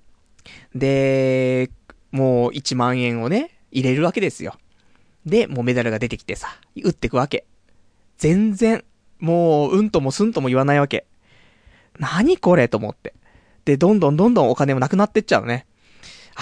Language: Japanese